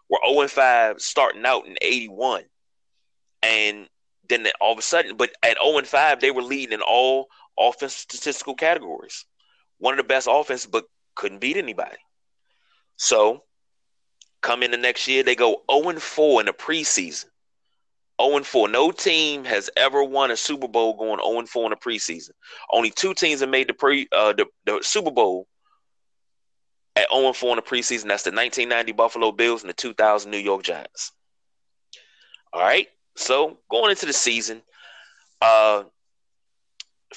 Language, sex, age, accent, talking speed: English, male, 20-39, American, 160 wpm